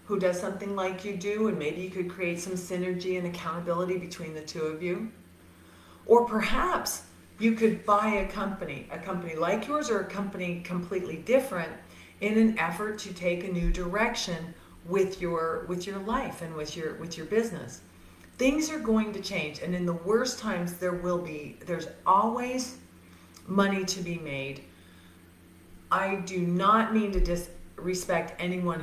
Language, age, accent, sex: English, 40-59, American, female